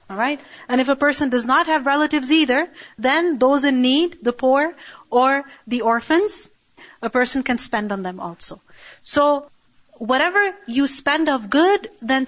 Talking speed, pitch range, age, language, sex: 165 wpm, 235-300 Hz, 40-59, English, female